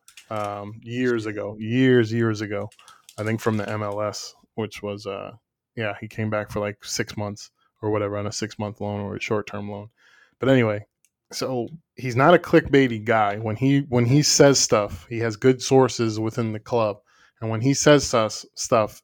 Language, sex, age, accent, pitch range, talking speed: English, male, 20-39, American, 110-125 Hz, 190 wpm